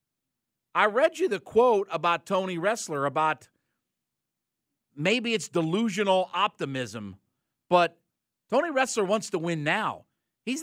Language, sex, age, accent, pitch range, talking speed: English, male, 50-69, American, 155-220 Hz, 120 wpm